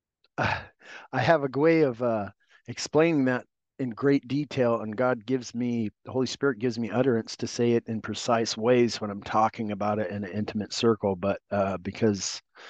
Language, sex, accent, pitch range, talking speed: English, male, American, 105-130 Hz, 185 wpm